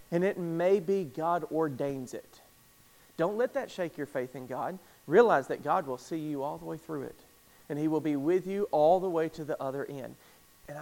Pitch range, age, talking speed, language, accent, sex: 150-205 Hz, 40-59, 220 wpm, English, American, male